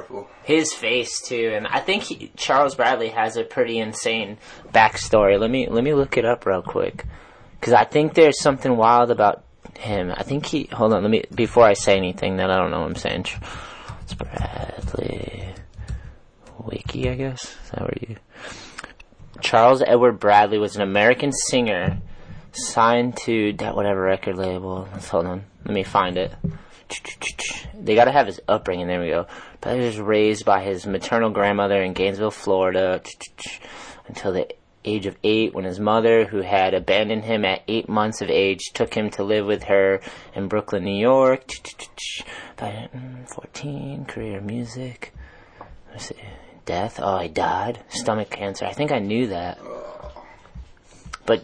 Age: 20-39